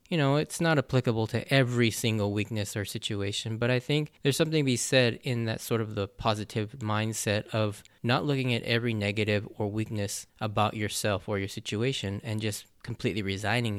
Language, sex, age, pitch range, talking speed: English, male, 20-39, 110-140 Hz, 185 wpm